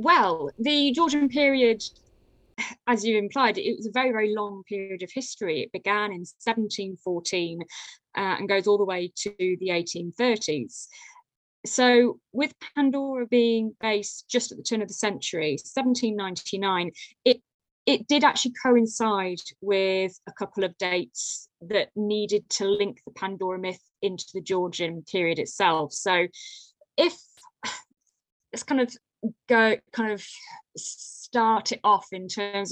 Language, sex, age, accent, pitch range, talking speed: English, female, 20-39, British, 185-240 Hz, 140 wpm